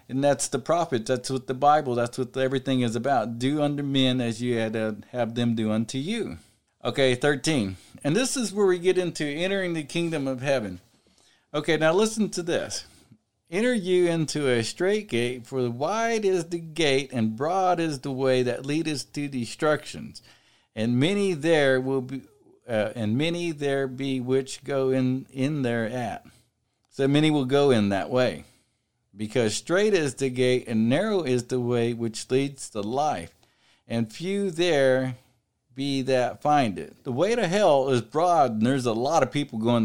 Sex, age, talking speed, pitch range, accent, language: male, 50-69, 180 wpm, 120-165 Hz, American, English